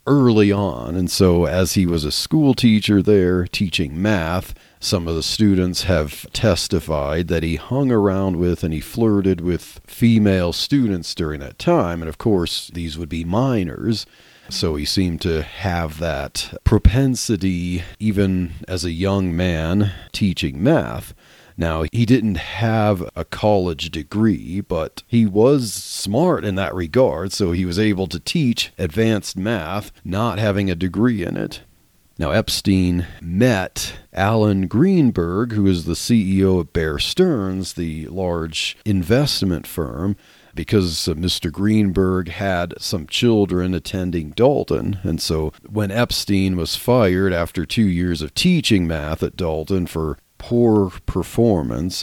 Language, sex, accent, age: English, male, American, 40-59